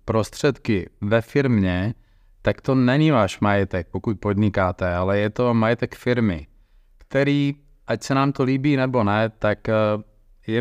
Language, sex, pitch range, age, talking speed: Czech, male, 100-120 Hz, 30-49, 140 wpm